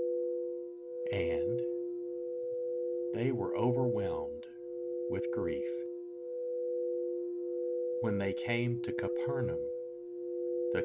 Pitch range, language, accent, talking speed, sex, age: 115-165 Hz, English, American, 65 wpm, male, 50-69